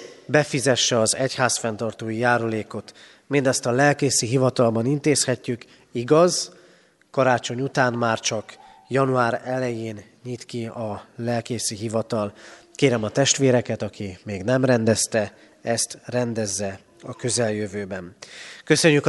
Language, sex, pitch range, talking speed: Hungarian, male, 110-135 Hz, 105 wpm